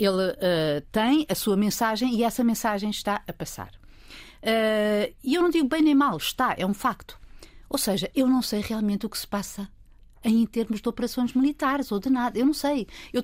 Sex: female